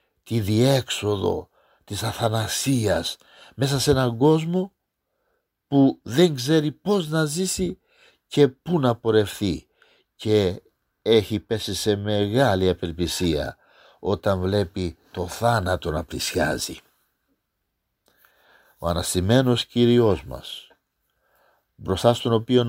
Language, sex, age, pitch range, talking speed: Greek, male, 50-69, 95-130 Hz, 100 wpm